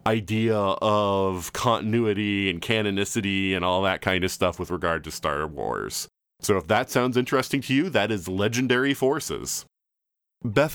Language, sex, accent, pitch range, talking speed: English, male, American, 90-125 Hz, 155 wpm